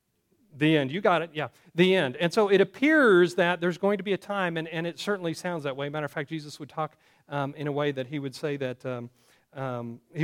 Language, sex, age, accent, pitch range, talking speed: English, male, 40-59, American, 135-185 Hz, 270 wpm